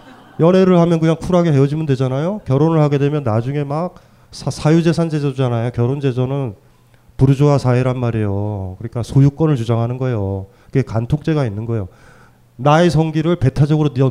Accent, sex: native, male